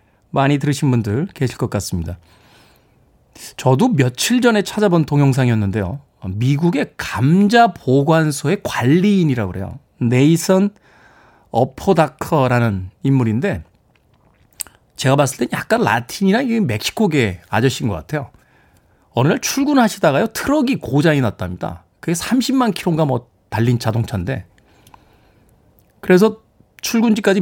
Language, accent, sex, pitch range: Korean, native, male, 120-195 Hz